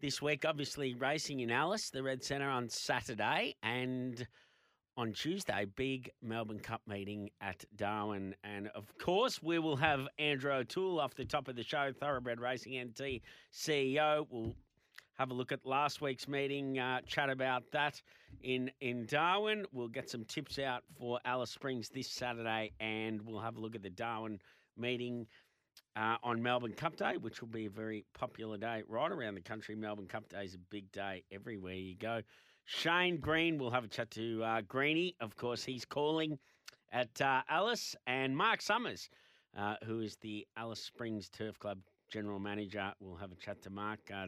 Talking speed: 180 wpm